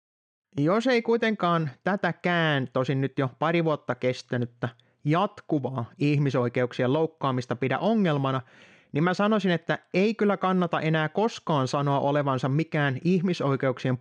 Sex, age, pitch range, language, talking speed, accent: male, 30-49, 130-180 Hz, Finnish, 120 wpm, native